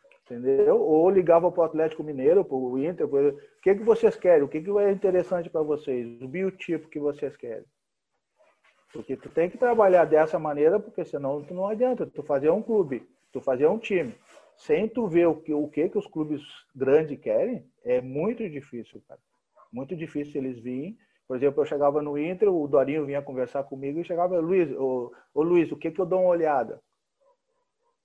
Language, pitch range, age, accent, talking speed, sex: Portuguese, 145-235 Hz, 40-59, Brazilian, 190 wpm, male